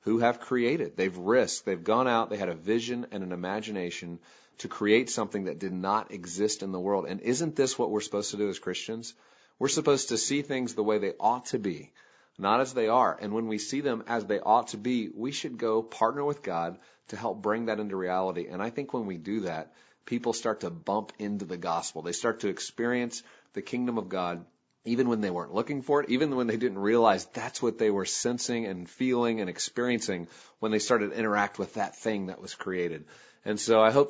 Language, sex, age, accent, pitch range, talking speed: English, male, 40-59, American, 95-115 Hz, 230 wpm